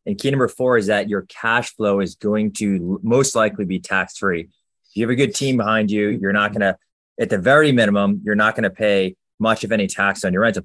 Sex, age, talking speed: male, 20-39, 250 wpm